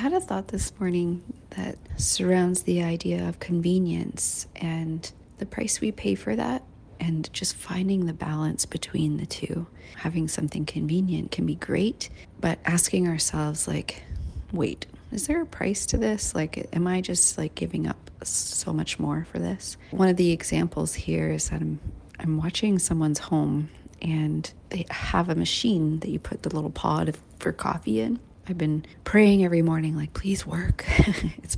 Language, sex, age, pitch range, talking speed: English, female, 30-49, 155-180 Hz, 175 wpm